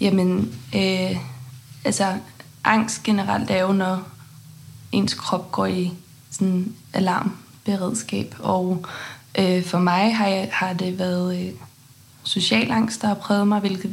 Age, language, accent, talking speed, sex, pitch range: 20-39, Danish, native, 135 wpm, female, 145-195 Hz